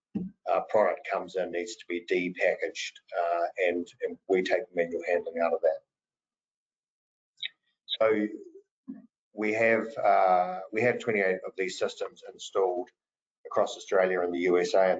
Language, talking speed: English, 140 wpm